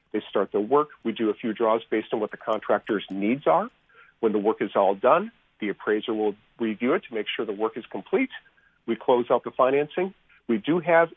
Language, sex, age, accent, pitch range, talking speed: English, male, 50-69, American, 110-145 Hz, 220 wpm